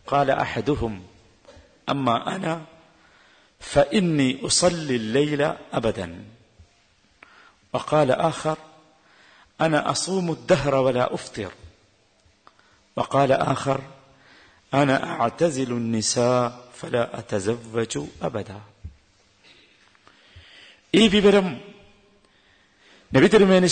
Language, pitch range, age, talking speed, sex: Malayalam, 110-155 Hz, 50-69, 70 wpm, male